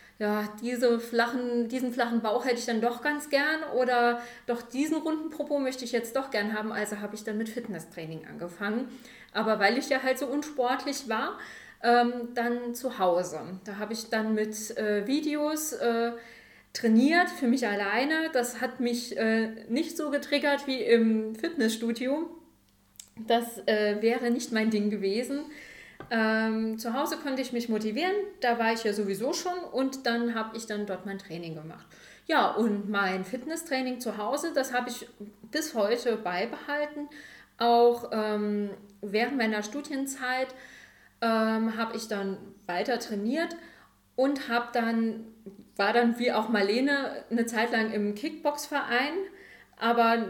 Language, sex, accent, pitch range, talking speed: German, female, German, 215-260 Hz, 155 wpm